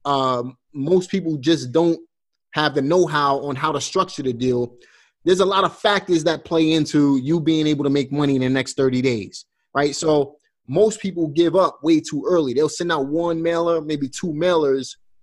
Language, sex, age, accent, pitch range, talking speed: English, male, 30-49, American, 135-165 Hz, 195 wpm